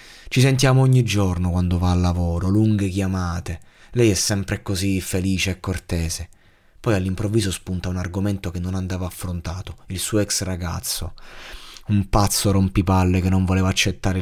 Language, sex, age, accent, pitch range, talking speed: Italian, male, 20-39, native, 90-110 Hz, 155 wpm